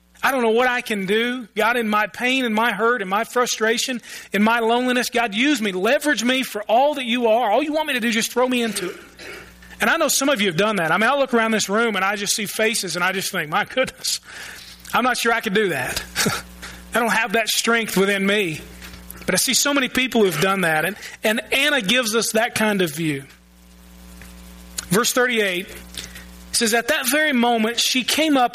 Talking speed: 235 wpm